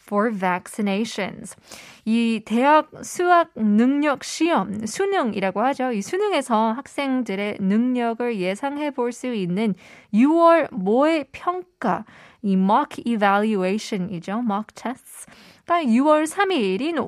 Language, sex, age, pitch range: Korean, female, 20-39, 200-265 Hz